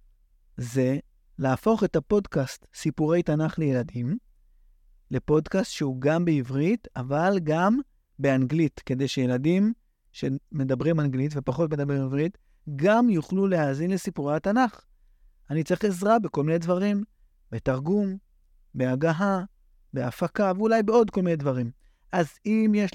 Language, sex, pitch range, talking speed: Hebrew, male, 140-195 Hz, 110 wpm